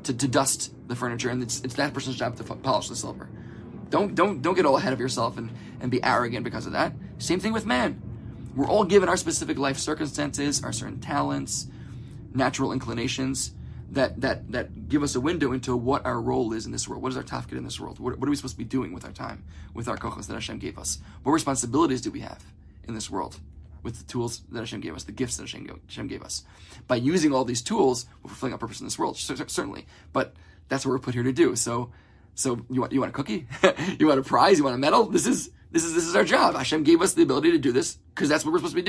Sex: male